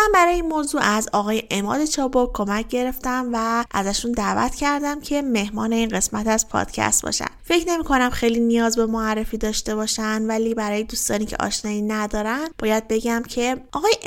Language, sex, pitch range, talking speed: Persian, female, 210-250 Hz, 165 wpm